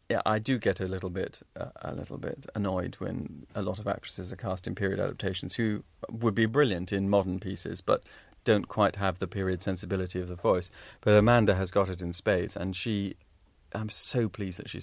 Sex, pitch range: male, 95-105 Hz